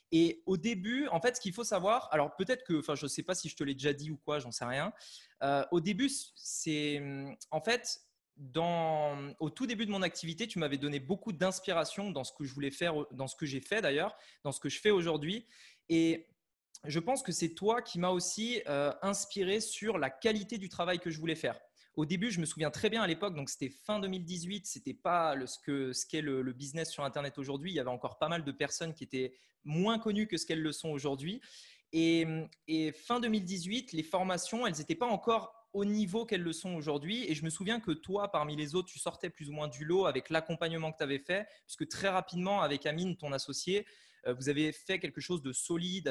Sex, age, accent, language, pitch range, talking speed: male, 20-39, French, French, 150-195 Hz, 230 wpm